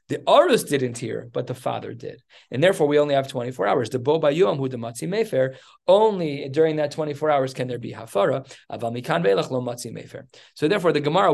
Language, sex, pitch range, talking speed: English, male, 130-160 Hz, 185 wpm